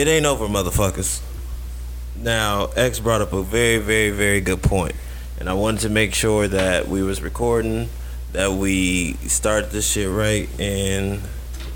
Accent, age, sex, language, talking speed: American, 20-39, male, English, 160 wpm